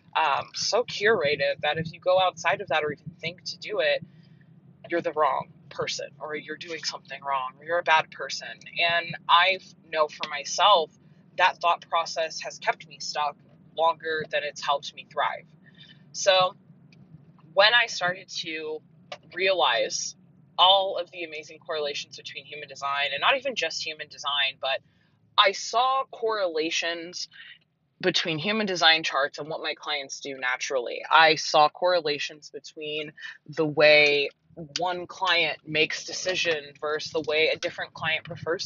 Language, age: English, 20-39